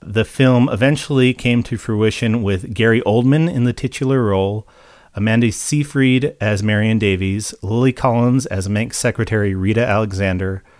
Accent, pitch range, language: American, 105-130 Hz, English